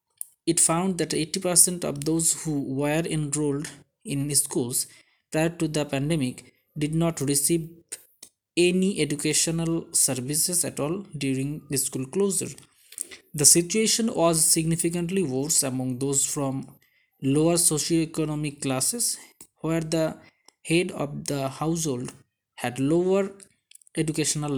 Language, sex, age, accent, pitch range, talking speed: Bengali, male, 20-39, native, 135-175 Hz, 115 wpm